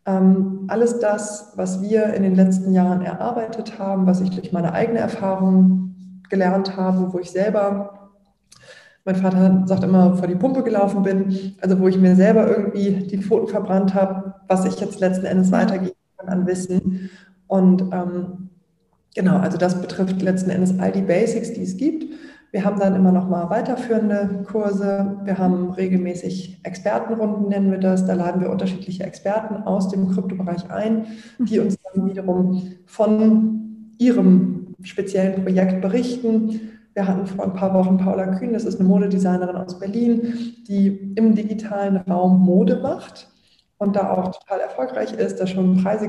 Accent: German